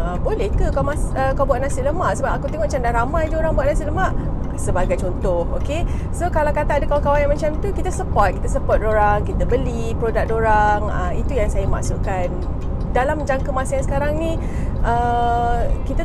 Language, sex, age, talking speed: Malay, female, 30-49, 200 wpm